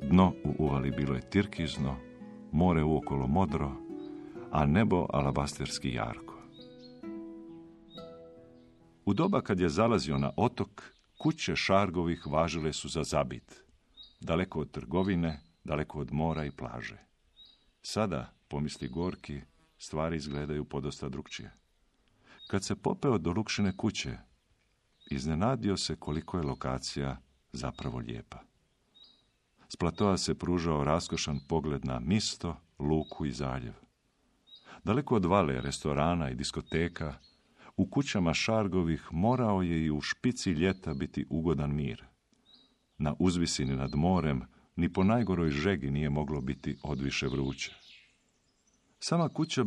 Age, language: 50-69, Croatian